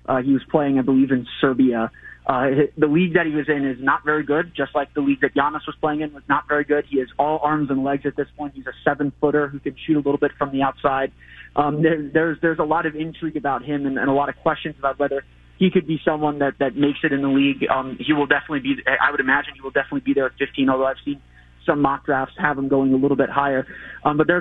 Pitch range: 135-150 Hz